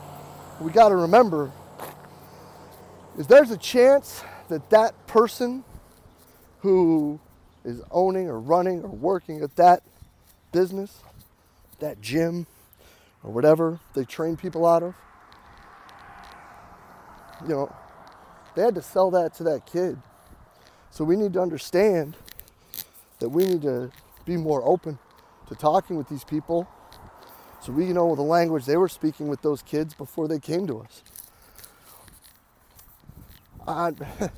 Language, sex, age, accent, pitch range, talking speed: English, male, 30-49, American, 135-185 Hz, 130 wpm